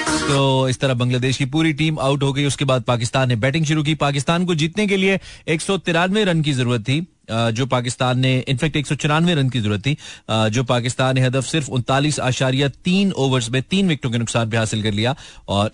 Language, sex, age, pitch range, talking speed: Hindi, male, 30-49, 115-150 Hz, 215 wpm